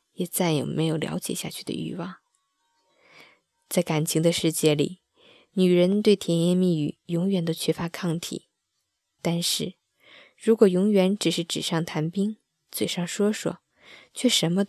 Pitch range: 165-200 Hz